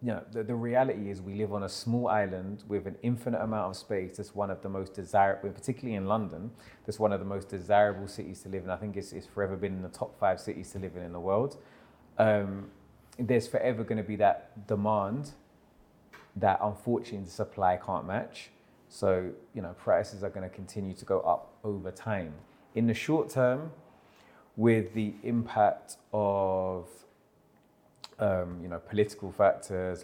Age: 20-39